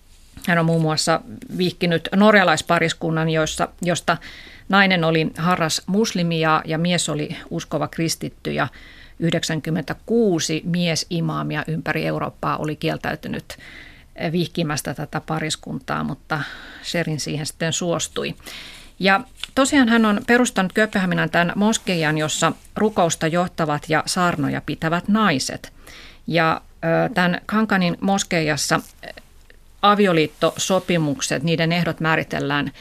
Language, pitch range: Finnish, 160-195 Hz